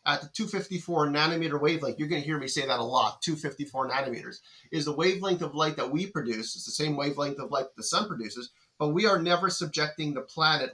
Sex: male